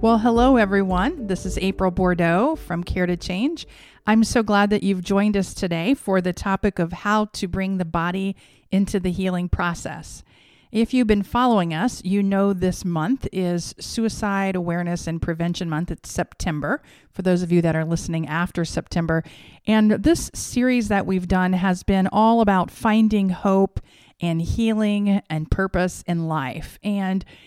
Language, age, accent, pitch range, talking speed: English, 40-59, American, 170-205 Hz, 170 wpm